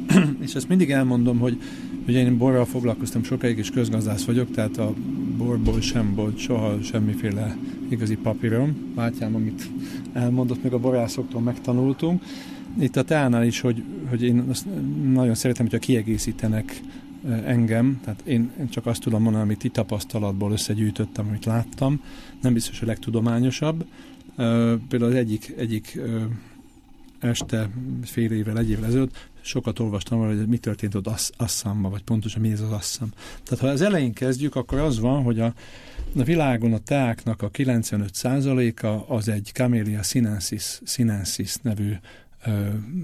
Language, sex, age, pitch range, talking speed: Hungarian, male, 50-69, 110-130 Hz, 150 wpm